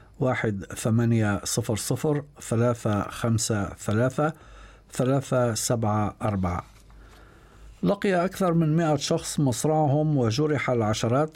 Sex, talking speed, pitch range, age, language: male, 60 wpm, 115-145 Hz, 50-69, Arabic